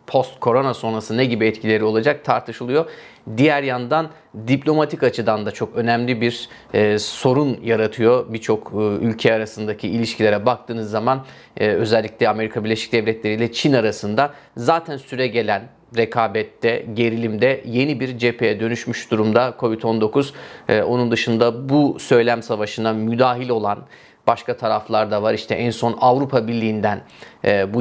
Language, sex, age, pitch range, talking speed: Turkish, male, 30-49, 110-135 Hz, 130 wpm